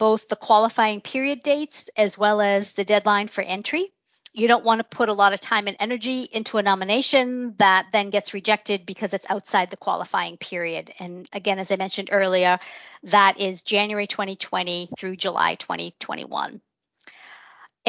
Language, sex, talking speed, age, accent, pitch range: English, female, 165 wpm, 40-59, American, 200-255 Hz